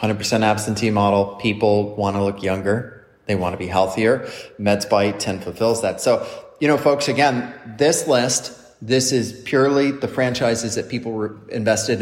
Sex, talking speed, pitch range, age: male, 160 wpm, 100-125 Hz, 30-49